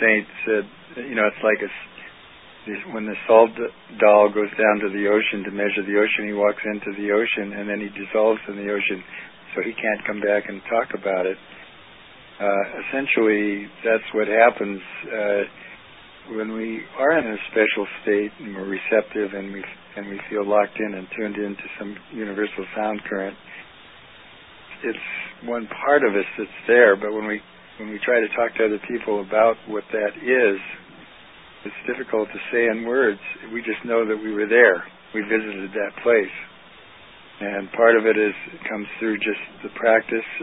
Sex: male